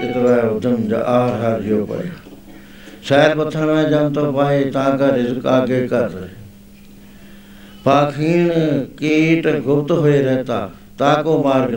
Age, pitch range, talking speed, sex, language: 60-79, 105-150 Hz, 125 wpm, male, Punjabi